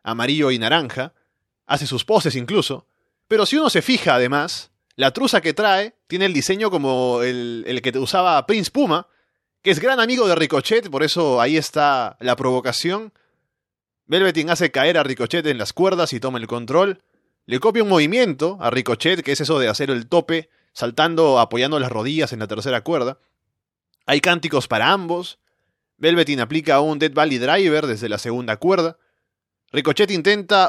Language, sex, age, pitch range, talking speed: Spanish, male, 30-49, 130-190 Hz, 170 wpm